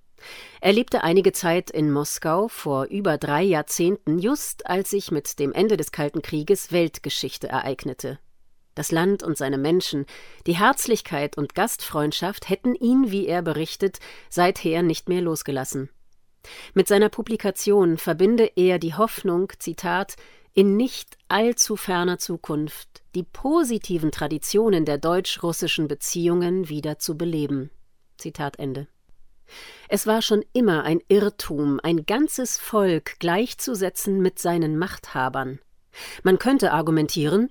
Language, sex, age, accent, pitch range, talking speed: German, female, 40-59, German, 155-210 Hz, 125 wpm